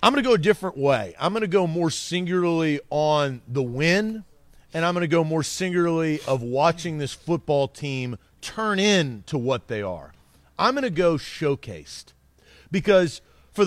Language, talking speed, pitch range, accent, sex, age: English, 175 wpm, 135-195 Hz, American, male, 40-59